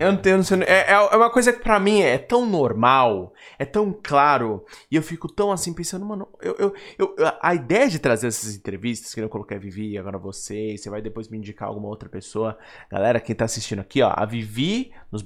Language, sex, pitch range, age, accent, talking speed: Portuguese, male, 110-185 Hz, 20-39, Brazilian, 230 wpm